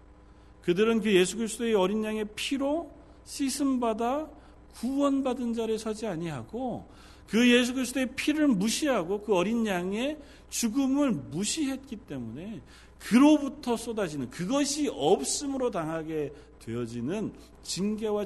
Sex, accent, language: male, native, Korean